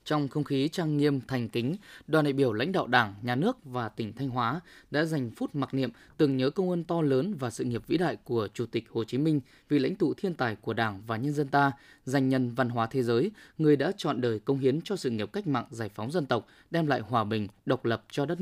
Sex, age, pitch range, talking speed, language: male, 20-39, 120-170 Hz, 265 wpm, Vietnamese